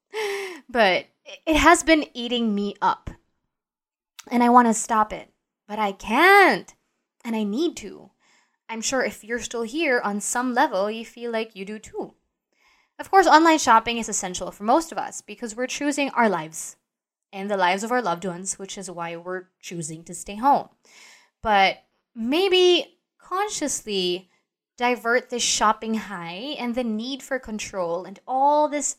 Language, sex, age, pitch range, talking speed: English, female, 20-39, 205-260 Hz, 165 wpm